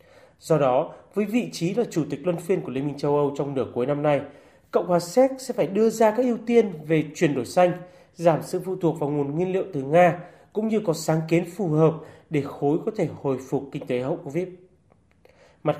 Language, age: Vietnamese, 30-49